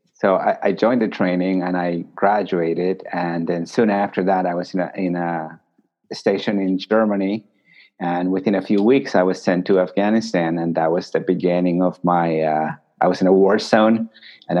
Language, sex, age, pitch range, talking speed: English, male, 30-49, 90-100 Hz, 190 wpm